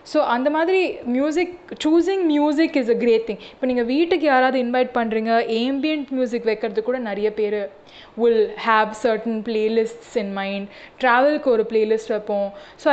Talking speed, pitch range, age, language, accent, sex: 160 wpm, 210-260 Hz, 20-39, Tamil, native, female